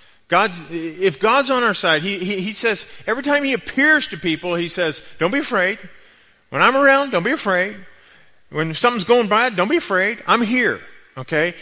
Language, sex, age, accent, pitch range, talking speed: English, male, 40-59, American, 155-220 Hz, 190 wpm